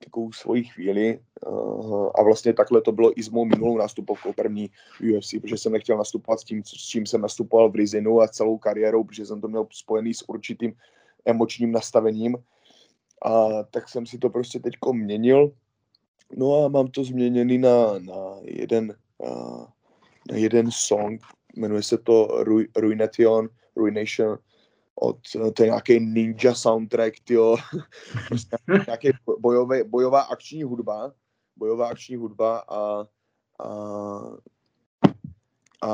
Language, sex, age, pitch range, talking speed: Czech, male, 20-39, 110-120 Hz, 130 wpm